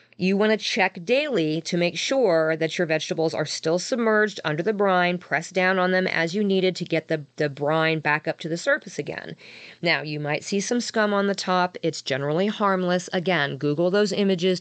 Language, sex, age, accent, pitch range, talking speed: English, female, 40-59, American, 160-210 Hz, 210 wpm